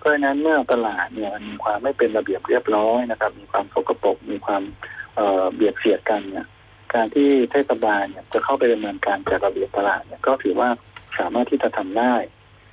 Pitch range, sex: 110-140 Hz, male